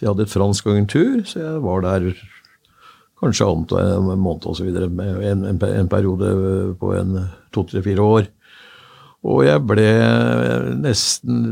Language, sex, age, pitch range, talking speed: English, male, 60-79, 95-120 Hz, 145 wpm